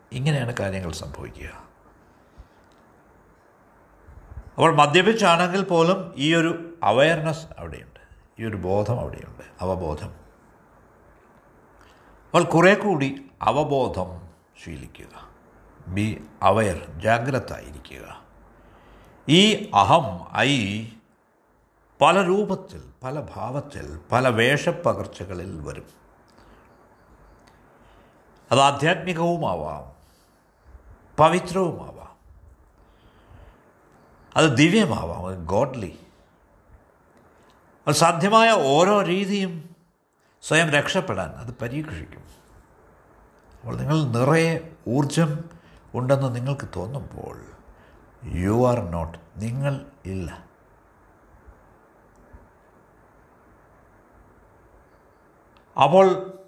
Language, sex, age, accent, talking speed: Malayalam, male, 60-79, native, 65 wpm